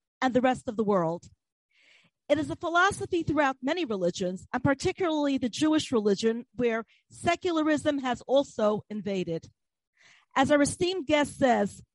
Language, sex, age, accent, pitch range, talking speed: English, female, 40-59, American, 225-280 Hz, 140 wpm